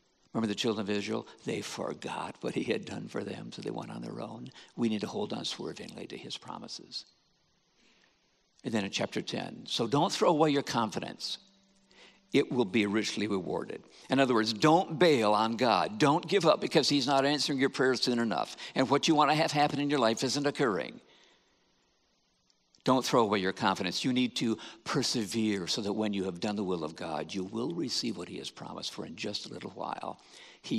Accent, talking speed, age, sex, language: American, 210 wpm, 60-79, male, English